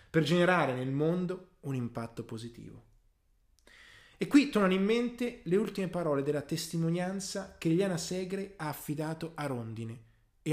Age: 20-39